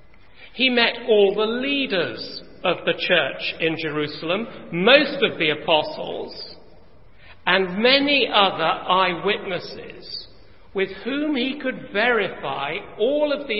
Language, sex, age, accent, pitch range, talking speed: English, male, 50-69, British, 150-205 Hz, 115 wpm